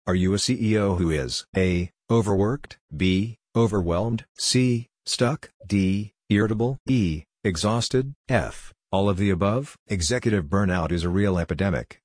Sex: male